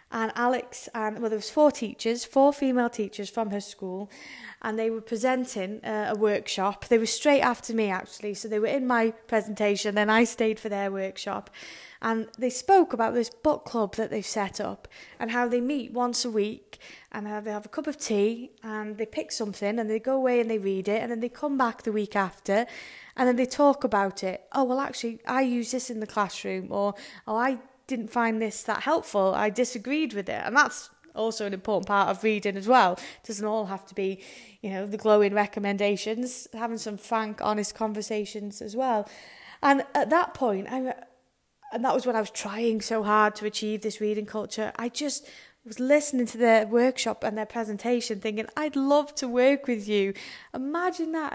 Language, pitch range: English, 210-250 Hz